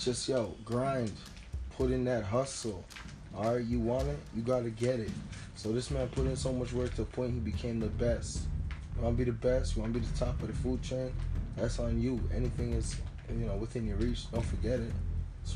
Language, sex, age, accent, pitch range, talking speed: English, male, 20-39, American, 100-120 Hz, 240 wpm